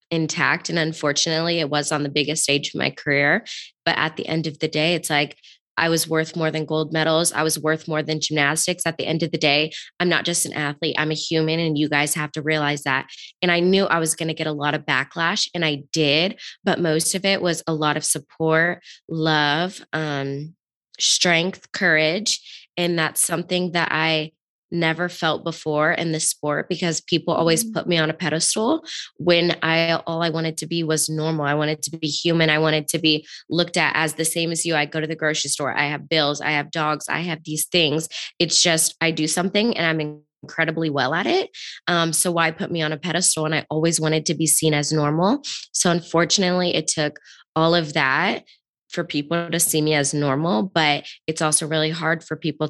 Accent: American